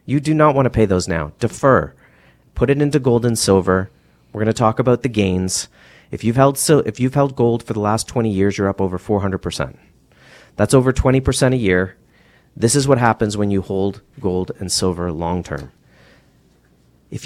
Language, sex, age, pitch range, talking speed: English, male, 40-59, 100-135 Hz, 210 wpm